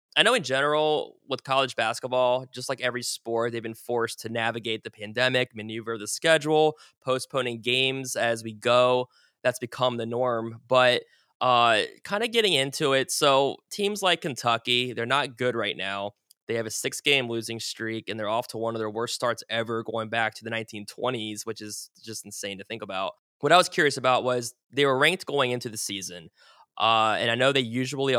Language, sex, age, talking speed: English, male, 20-39, 200 wpm